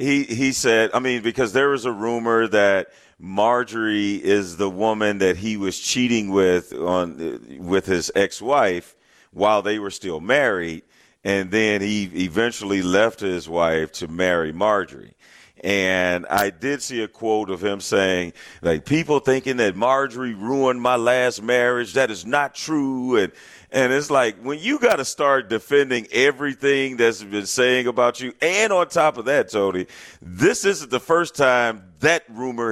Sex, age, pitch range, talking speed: male, 40-59, 100-130 Hz, 165 wpm